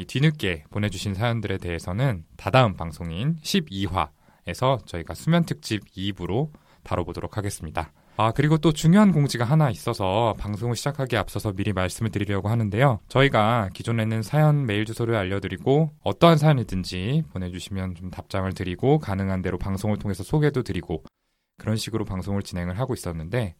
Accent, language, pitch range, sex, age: native, Korean, 90-120 Hz, male, 20-39